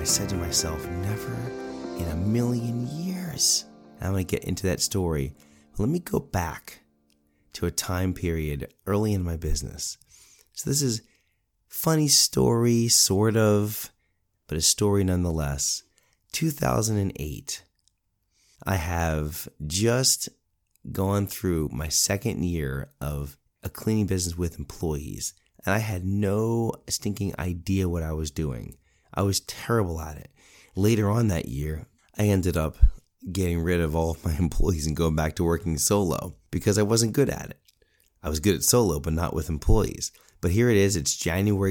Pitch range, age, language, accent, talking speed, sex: 80-100 Hz, 30-49, English, American, 160 wpm, male